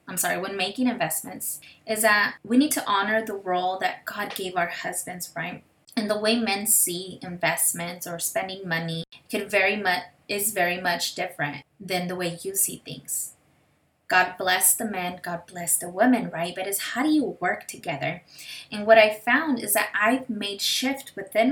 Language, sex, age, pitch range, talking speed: English, female, 20-39, 180-220 Hz, 185 wpm